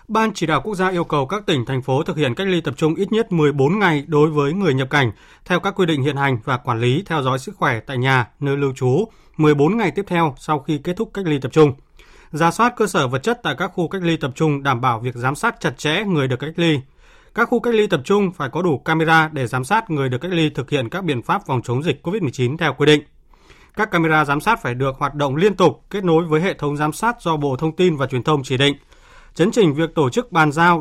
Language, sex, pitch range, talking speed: Vietnamese, male, 140-180 Hz, 275 wpm